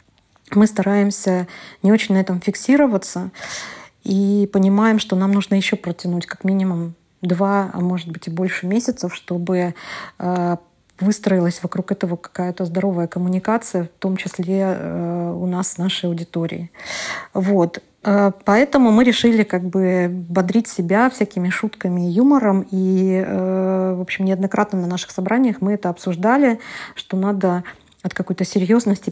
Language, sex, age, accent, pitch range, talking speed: Russian, female, 30-49, native, 180-200 Hz, 135 wpm